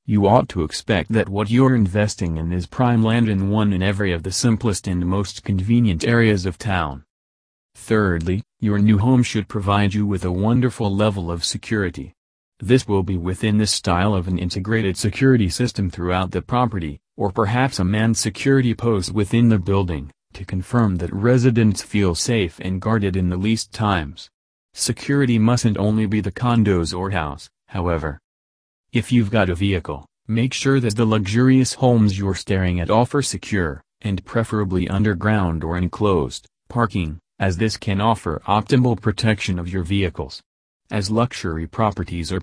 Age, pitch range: 40-59, 90-115 Hz